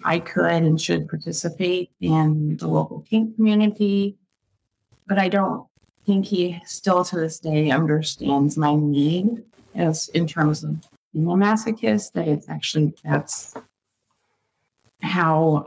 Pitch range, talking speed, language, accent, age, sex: 155-205 Hz, 130 wpm, English, American, 30-49, female